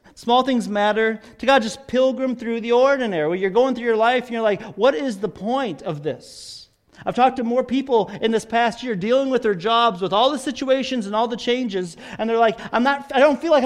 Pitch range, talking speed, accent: 170-250 Hz, 240 wpm, American